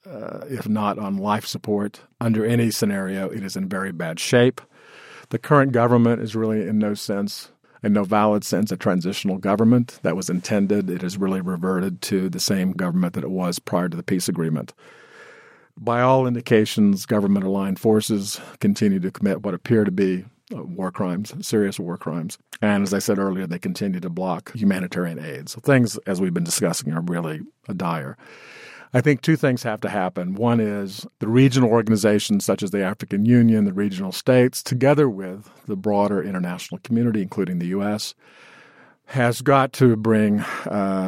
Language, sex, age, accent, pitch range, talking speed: English, male, 50-69, American, 95-120 Hz, 175 wpm